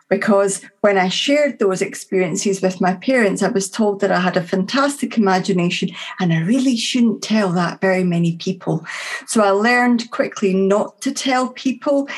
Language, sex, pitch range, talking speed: English, female, 190-240 Hz, 170 wpm